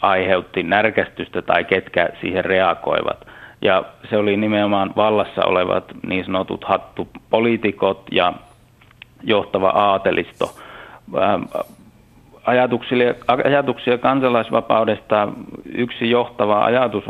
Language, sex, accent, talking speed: Finnish, male, native, 80 wpm